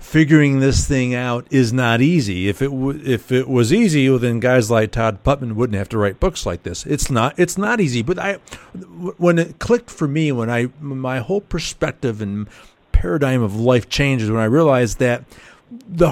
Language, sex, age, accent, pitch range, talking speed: English, male, 50-69, American, 115-155 Hz, 200 wpm